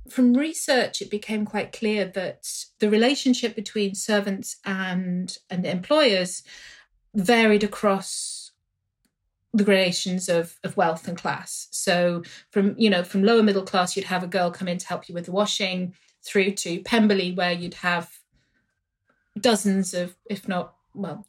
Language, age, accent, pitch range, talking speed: English, 30-49, British, 175-215 Hz, 150 wpm